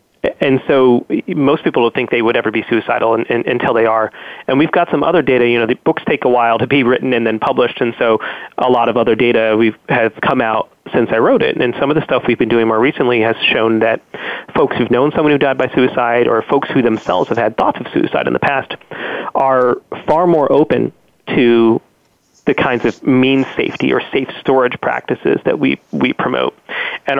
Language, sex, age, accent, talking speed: English, male, 30-49, American, 225 wpm